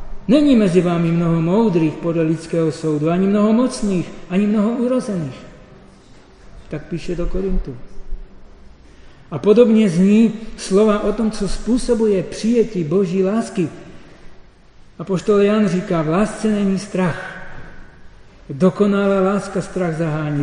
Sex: male